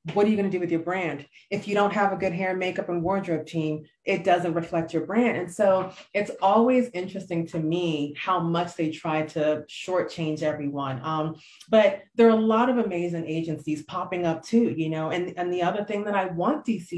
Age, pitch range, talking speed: 30-49, 165-220 Hz, 220 wpm